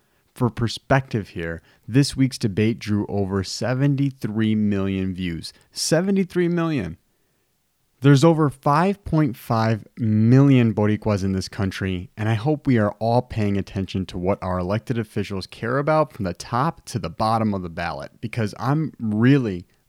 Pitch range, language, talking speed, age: 95-125 Hz, English, 145 wpm, 30-49